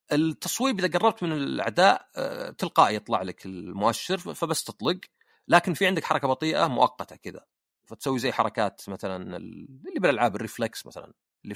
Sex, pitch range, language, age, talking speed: male, 115-175 Hz, Arabic, 40-59, 140 wpm